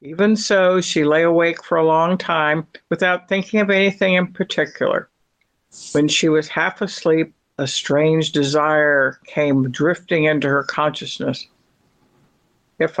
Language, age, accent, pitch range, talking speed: English, 60-79, American, 150-190 Hz, 135 wpm